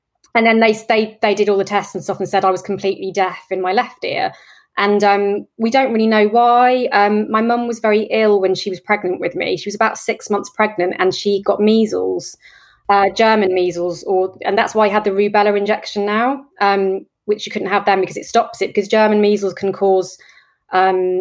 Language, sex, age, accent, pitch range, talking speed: English, female, 20-39, British, 190-220 Hz, 225 wpm